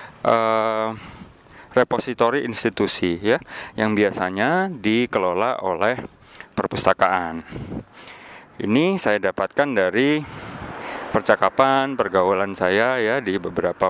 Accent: native